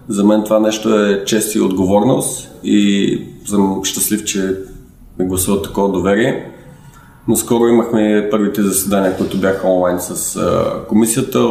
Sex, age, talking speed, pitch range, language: male, 20-39, 135 wpm, 95-110 Hz, Bulgarian